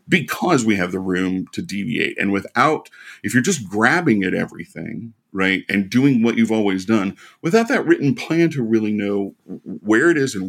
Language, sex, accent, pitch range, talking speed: English, male, American, 95-120 Hz, 190 wpm